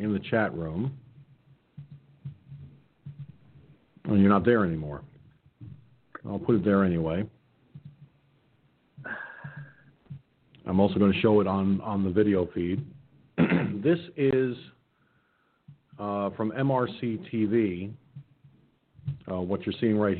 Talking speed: 105 wpm